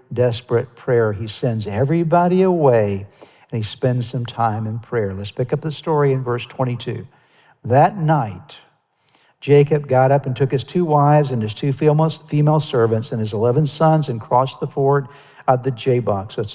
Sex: male